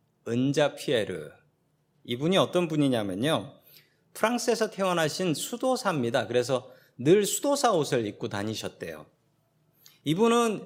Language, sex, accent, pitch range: Korean, male, native, 145-215 Hz